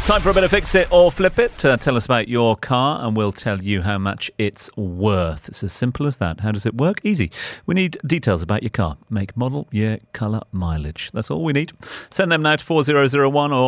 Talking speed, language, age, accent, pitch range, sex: 235 wpm, English, 40-59, British, 95-130 Hz, male